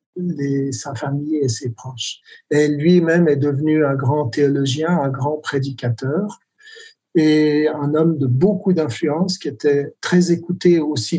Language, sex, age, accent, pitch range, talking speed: French, male, 60-79, French, 145-185 Hz, 145 wpm